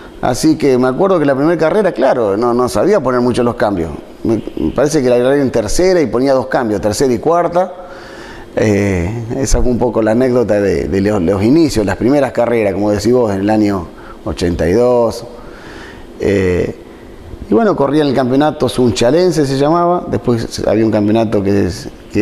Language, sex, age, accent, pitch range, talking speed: Spanish, male, 30-49, Argentinian, 110-150 Hz, 185 wpm